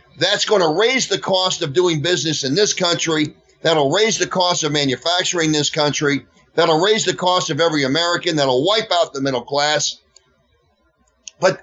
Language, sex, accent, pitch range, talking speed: English, male, American, 160-220 Hz, 175 wpm